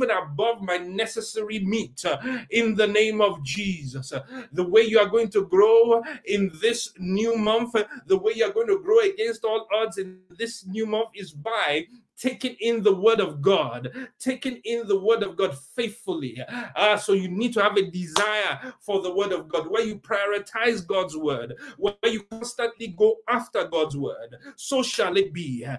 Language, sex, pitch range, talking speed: English, male, 190-230 Hz, 180 wpm